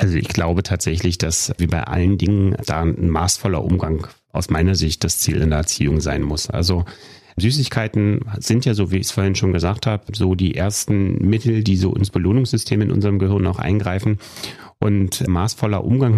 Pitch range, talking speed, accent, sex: 95-110 Hz, 190 wpm, German, male